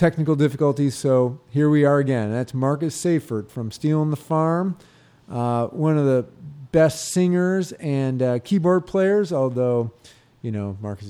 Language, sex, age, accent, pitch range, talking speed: English, male, 40-59, American, 125-155 Hz, 150 wpm